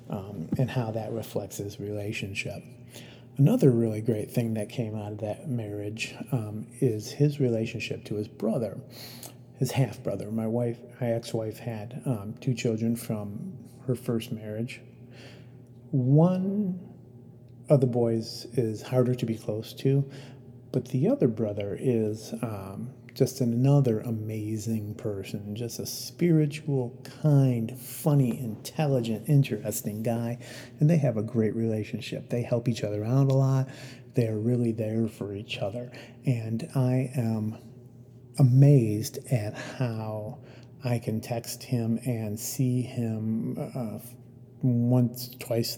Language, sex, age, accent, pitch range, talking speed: English, male, 40-59, American, 110-130 Hz, 130 wpm